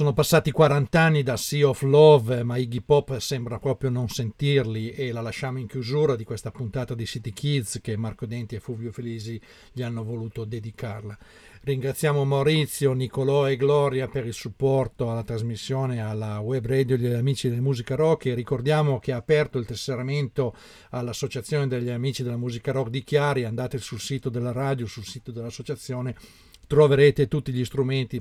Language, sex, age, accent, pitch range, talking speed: Italian, male, 50-69, native, 115-135 Hz, 175 wpm